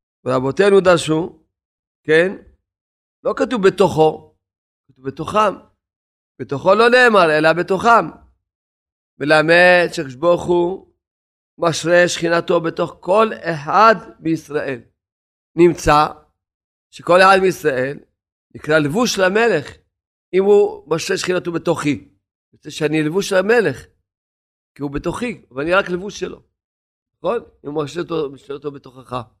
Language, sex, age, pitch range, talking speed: Hebrew, male, 40-59, 130-190 Hz, 110 wpm